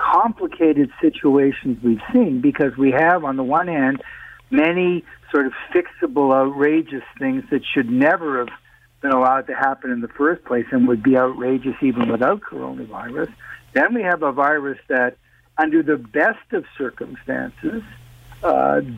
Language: English